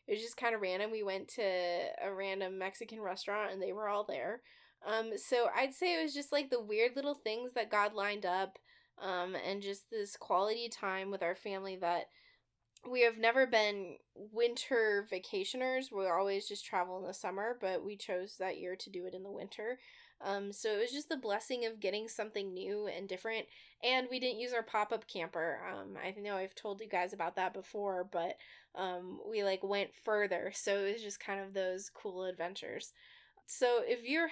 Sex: female